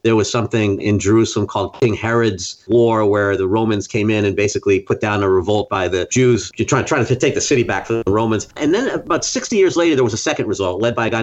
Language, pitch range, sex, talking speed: English, 100-125 Hz, male, 260 wpm